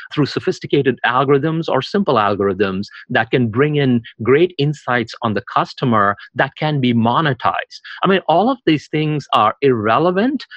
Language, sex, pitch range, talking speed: English, male, 115-155 Hz, 155 wpm